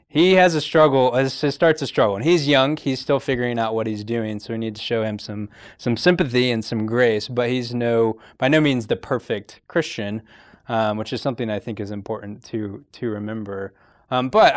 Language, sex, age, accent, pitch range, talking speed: English, male, 20-39, American, 100-120 Hz, 220 wpm